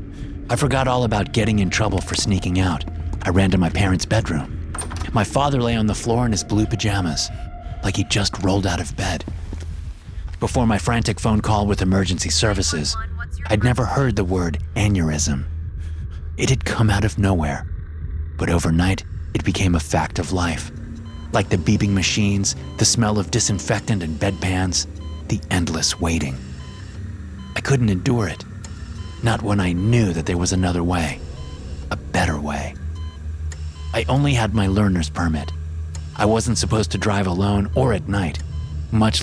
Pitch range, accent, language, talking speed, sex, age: 80-105 Hz, American, English, 160 wpm, male, 30-49